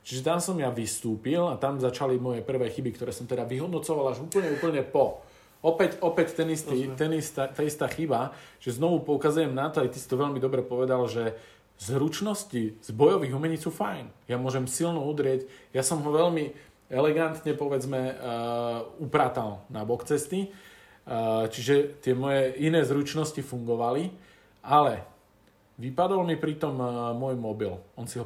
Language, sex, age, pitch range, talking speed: Slovak, male, 40-59, 115-150 Hz, 160 wpm